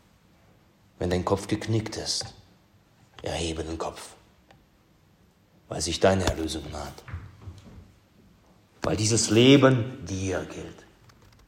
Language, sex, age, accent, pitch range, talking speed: German, male, 40-59, German, 95-130 Hz, 95 wpm